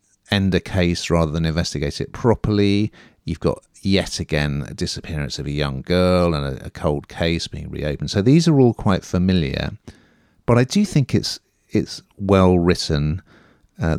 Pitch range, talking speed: 75-100 Hz, 170 wpm